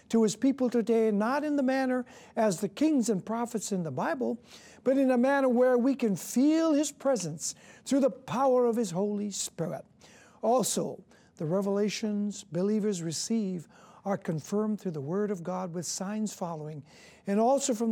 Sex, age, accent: male, 60-79, American